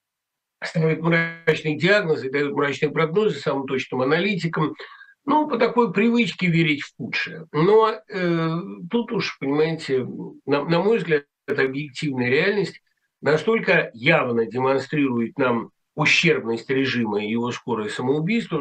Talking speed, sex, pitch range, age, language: 125 wpm, male, 140-195 Hz, 50-69, Russian